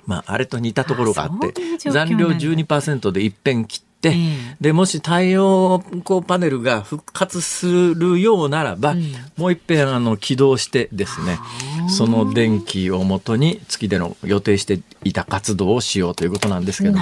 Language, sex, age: Japanese, male, 40-59